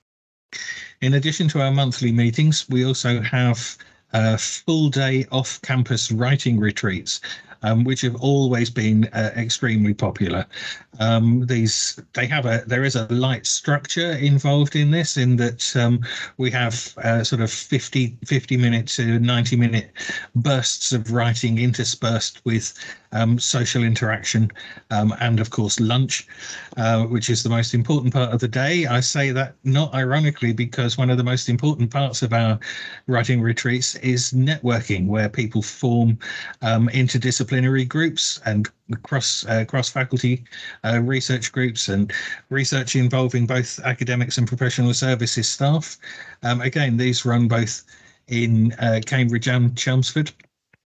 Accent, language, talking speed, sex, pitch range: British, English, 145 wpm, male, 115-130 Hz